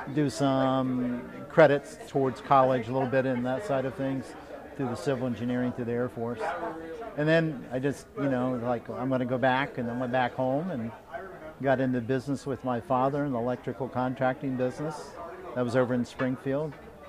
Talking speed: 190 wpm